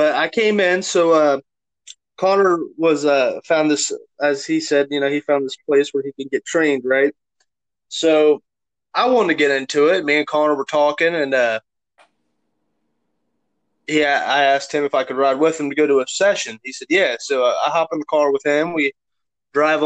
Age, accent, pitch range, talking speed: 20-39, American, 140-175 Hz, 205 wpm